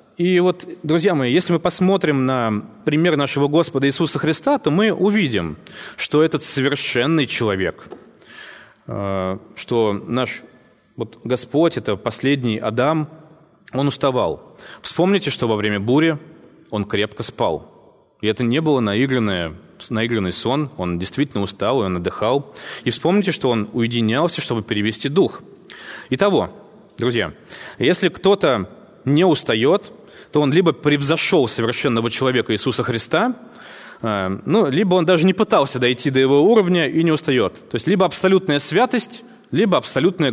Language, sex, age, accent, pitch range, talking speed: Russian, male, 20-39, native, 115-165 Hz, 135 wpm